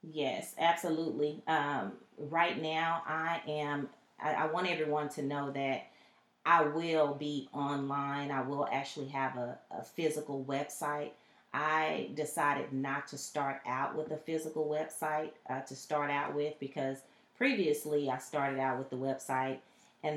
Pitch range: 140-170 Hz